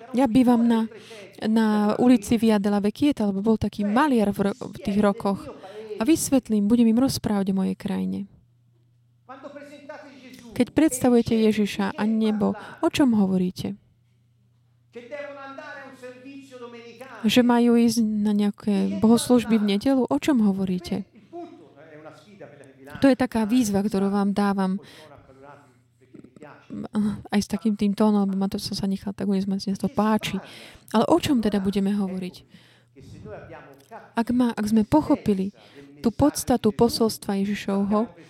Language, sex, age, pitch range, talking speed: Slovak, female, 20-39, 195-240 Hz, 125 wpm